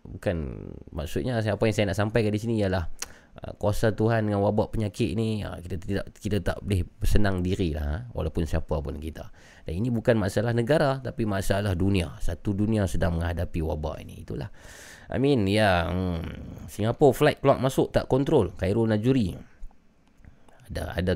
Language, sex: Malay, male